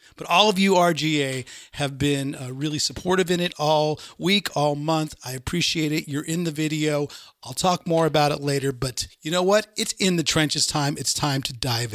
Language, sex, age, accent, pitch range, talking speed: English, male, 50-69, American, 140-180 Hz, 210 wpm